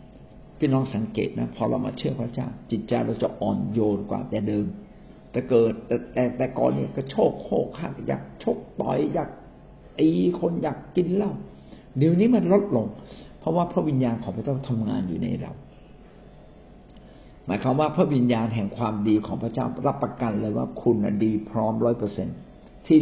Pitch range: 110-140 Hz